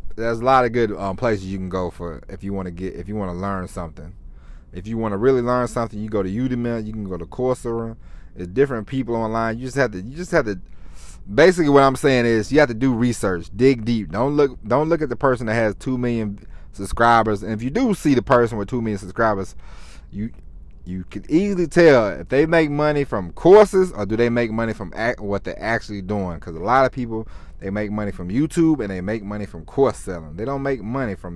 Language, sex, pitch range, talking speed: English, male, 90-125 Hz, 245 wpm